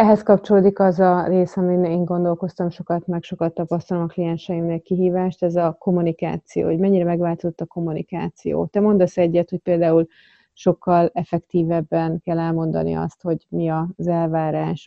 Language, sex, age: Hungarian, female, 30-49